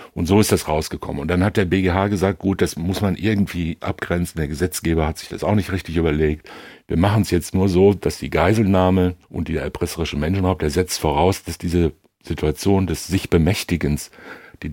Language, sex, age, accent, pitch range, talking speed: German, male, 60-79, German, 80-100 Hz, 200 wpm